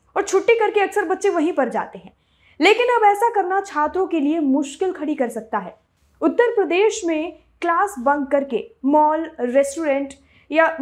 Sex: female